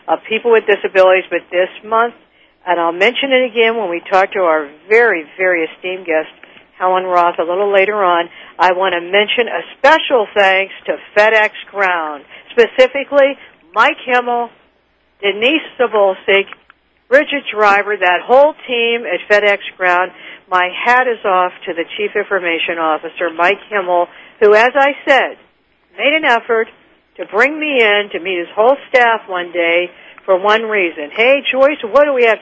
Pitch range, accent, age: 180-240 Hz, American, 60-79